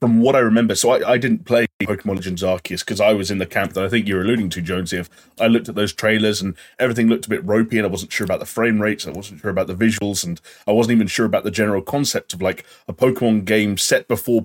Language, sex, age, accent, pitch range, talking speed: English, male, 30-49, British, 95-115 Hz, 280 wpm